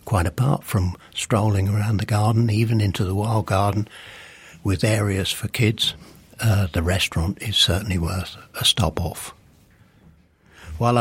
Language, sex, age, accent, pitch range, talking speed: English, male, 60-79, British, 95-115 Hz, 140 wpm